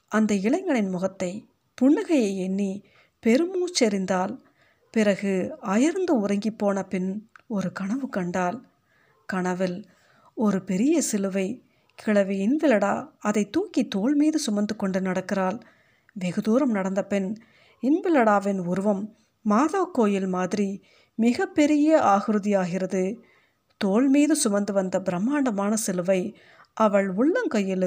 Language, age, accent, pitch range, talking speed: Tamil, 50-69, native, 190-255 Hz, 95 wpm